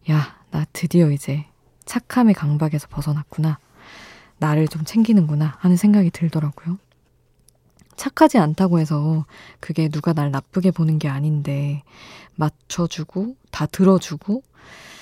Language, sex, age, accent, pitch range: Korean, female, 20-39, native, 150-185 Hz